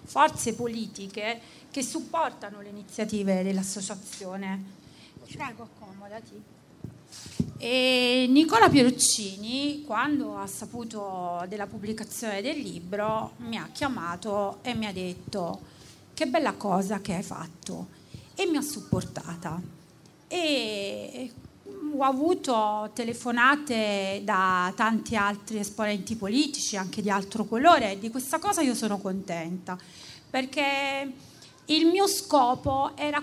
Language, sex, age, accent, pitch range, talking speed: Italian, female, 40-59, native, 205-280 Hz, 105 wpm